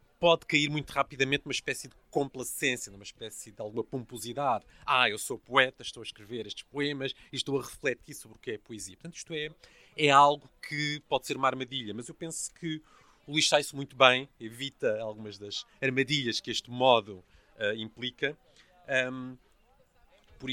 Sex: male